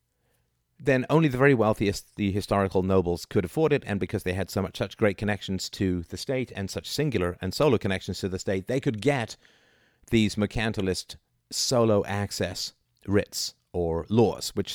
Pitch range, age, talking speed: 90-120 Hz, 50-69, 175 wpm